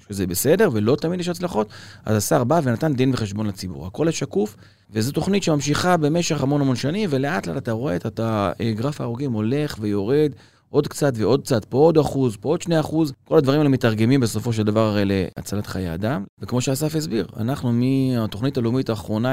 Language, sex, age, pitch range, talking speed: Hebrew, male, 30-49, 110-145 Hz, 185 wpm